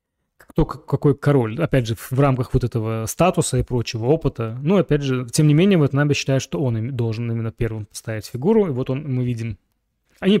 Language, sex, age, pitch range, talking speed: Russian, male, 20-39, 120-170 Hz, 210 wpm